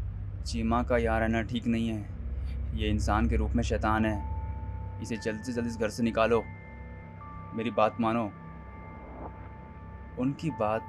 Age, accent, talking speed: 20-39, native, 155 wpm